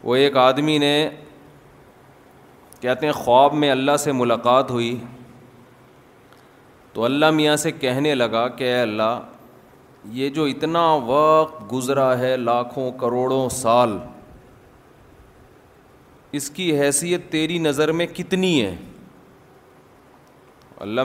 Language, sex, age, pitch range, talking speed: Urdu, male, 30-49, 125-150 Hz, 110 wpm